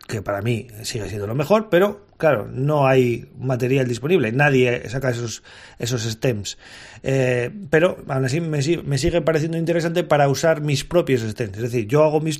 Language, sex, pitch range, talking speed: Spanish, male, 130-170 Hz, 180 wpm